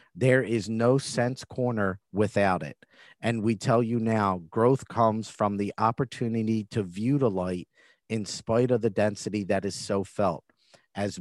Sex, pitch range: male, 100-120 Hz